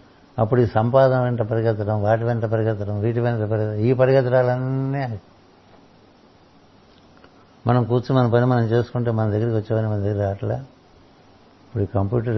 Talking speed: 140 wpm